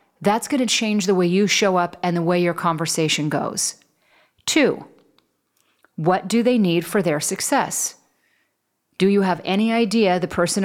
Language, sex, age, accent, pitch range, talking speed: English, female, 30-49, American, 170-210 Hz, 170 wpm